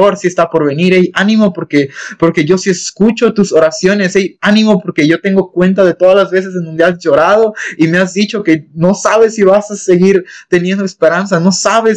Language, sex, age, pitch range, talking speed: Spanish, male, 20-39, 140-195 Hz, 210 wpm